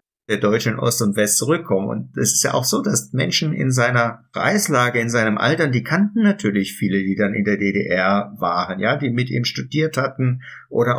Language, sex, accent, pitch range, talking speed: German, male, German, 110-135 Hz, 200 wpm